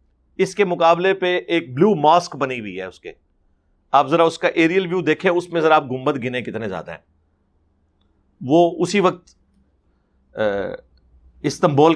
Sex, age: male, 50-69